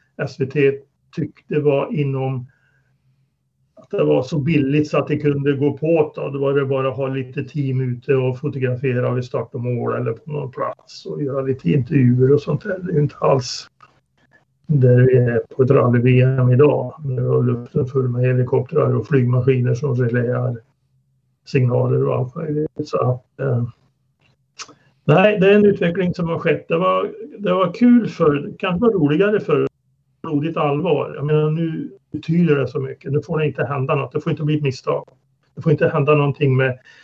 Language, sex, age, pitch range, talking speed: Swedish, male, 60-79, 135-155 Hz, 180 wpm